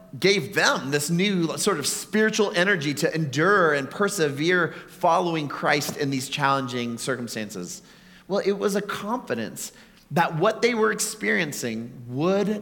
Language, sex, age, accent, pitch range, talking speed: English, male, 30-49, American, 135-185 Hz, 140 wpm